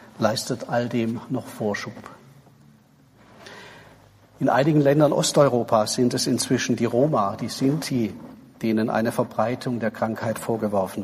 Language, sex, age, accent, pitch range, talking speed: German, male, 50-69, German, 110-135 Hz, 120 wpm